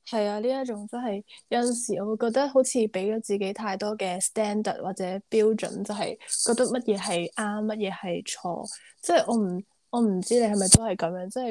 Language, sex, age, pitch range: Chinese, female, 10-29, 195-245 Hz